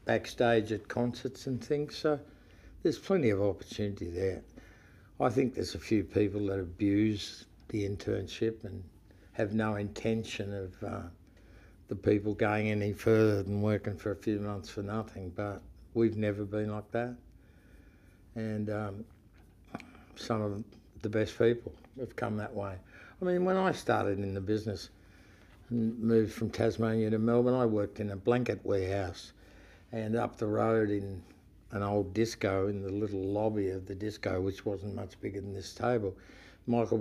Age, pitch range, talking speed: 60-79, 100-115 Hz, 160 wpm